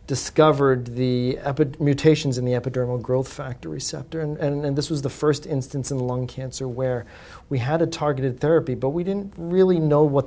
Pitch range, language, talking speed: 125-150 Hz, English, 195 wpm